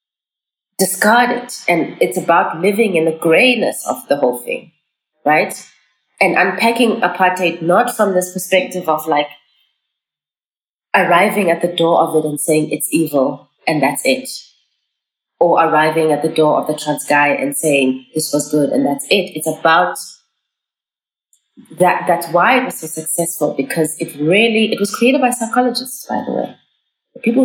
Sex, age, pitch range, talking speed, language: female, 30-49, 155-215 Hz, 160 wpm, English